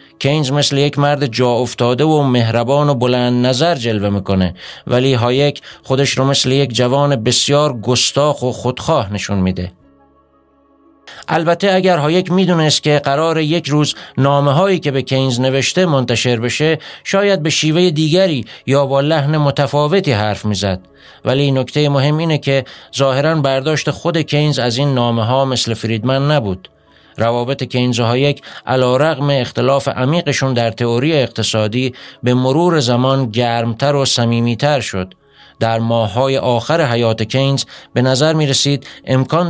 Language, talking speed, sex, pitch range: Persian, 145 wpm, male, 120-145 Hz